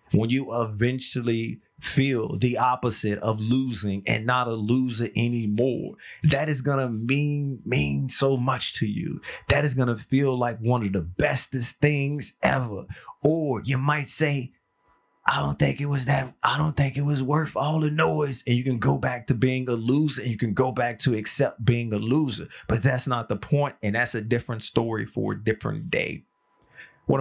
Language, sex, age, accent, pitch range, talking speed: English, male, 30-49, American, 115-135 Hz, 195 wpm